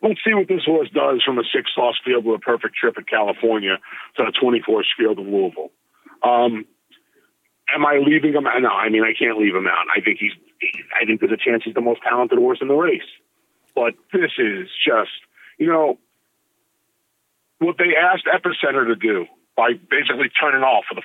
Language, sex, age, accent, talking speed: English, male, 40-59, American, 200 wpm